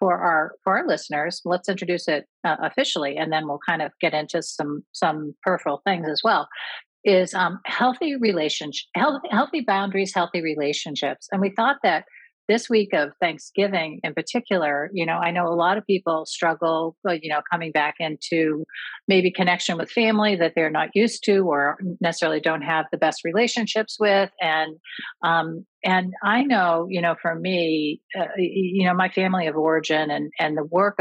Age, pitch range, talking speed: 40-59, 150-185 Hz, 180 wpm